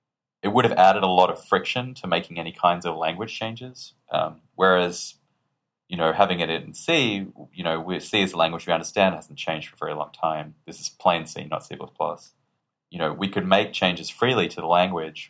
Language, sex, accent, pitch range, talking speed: English, male, Australian, 80-95 Hz, 215 wpm